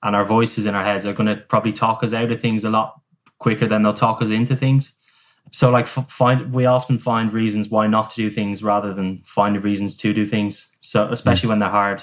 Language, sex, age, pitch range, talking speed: English, male, 10-29, 100-125 Hz, 245 wpm